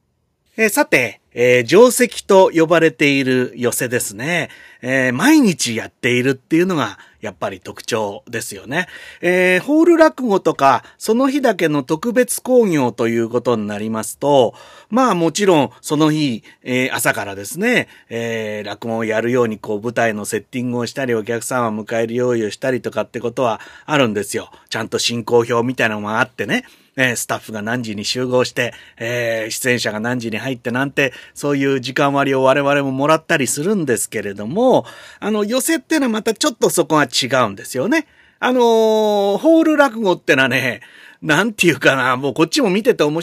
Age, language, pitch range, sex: 30-49, Japanese, 115-180 Hz, male